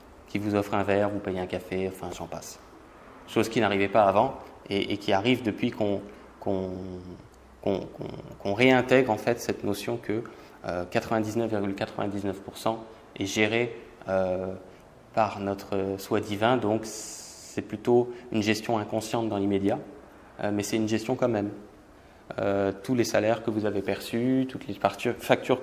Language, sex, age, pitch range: French, male, 20-39, 100-125 Hz